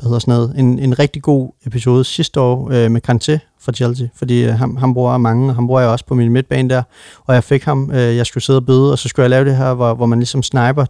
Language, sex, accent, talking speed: Danish, male, native, 265 wpm